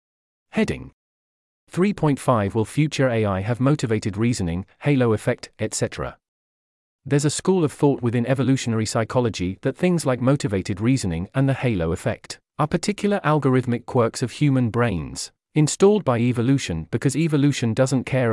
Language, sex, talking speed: English, male, 140 wpm